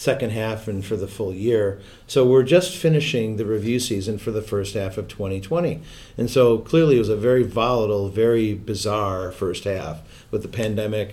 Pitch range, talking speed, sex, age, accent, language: 105-125 Hz, 190 wpm, male, 50-69, American, English